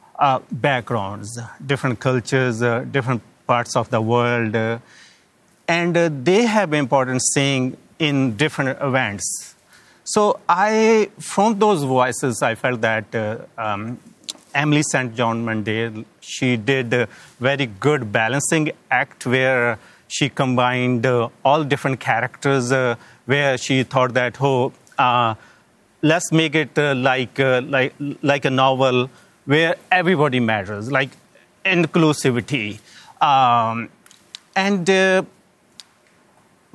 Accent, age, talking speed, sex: Indian, 30-49, 120 wpm, male